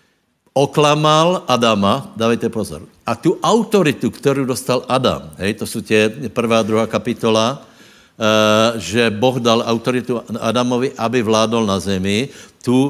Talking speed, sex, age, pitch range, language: 125 wpm, male, 60-79, 110-130 Hz, Slovak